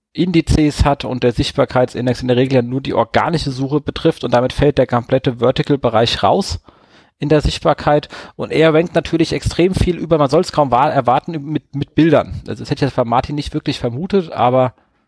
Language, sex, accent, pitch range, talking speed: German, male, German, 125-150 Hz, 195 wpm